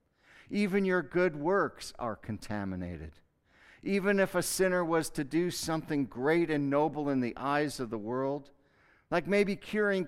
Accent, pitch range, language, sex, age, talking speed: American, 95-145 Hz, English, male, 50-69, 155 wpm